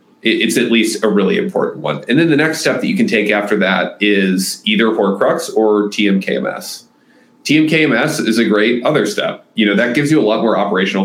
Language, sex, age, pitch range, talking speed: English, male, 30-49, 100-125 Hz, 205 wpm